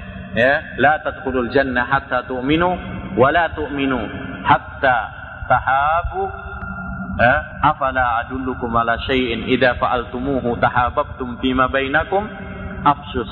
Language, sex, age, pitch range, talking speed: Malay, male, 30-49, 110-135 Hz, 100 wpm